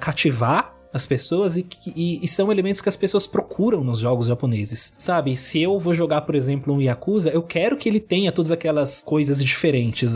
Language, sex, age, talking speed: Portuguese, male, 20-39, 200 wpm